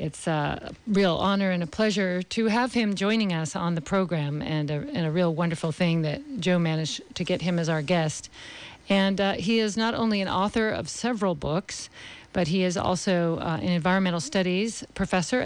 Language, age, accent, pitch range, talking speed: English, 50-69, American, 170-215 Hz, 195 wpm